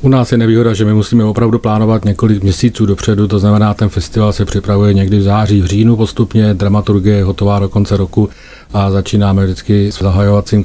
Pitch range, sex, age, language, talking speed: 95-110 Hz, male, 40-59, Czech, 195 wpm